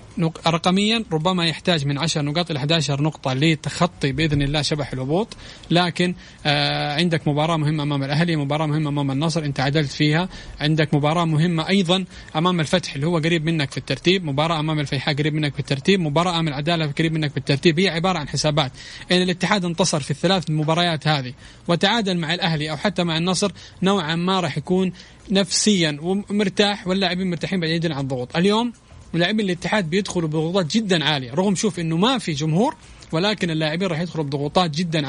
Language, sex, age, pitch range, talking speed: English, male, 30-49, 150-185 Hz, 170 wpm